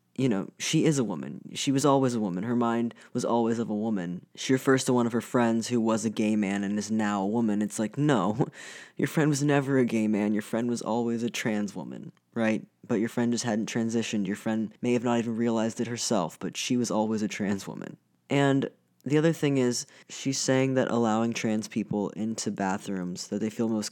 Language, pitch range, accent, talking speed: English, 110-130 Hz, American, 230 wpm